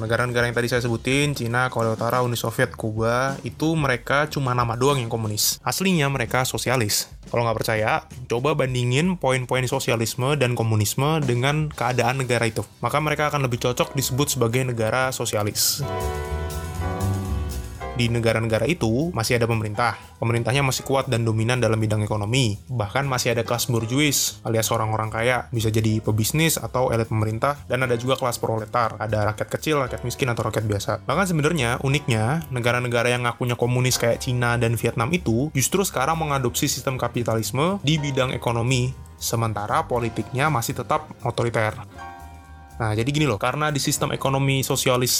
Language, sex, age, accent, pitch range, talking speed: Indonesian, male, 20-39, native, 115-135 Hz, 155 wpm